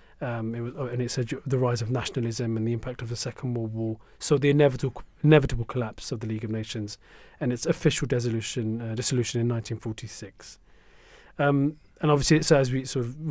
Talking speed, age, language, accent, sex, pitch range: 205 wpm, 40-59, English, British, male, 120-150 Hz